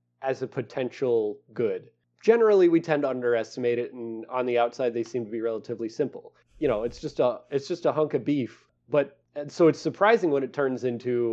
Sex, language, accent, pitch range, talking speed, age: male, English, American, 115-155 Hz, 210 wpm, 30-49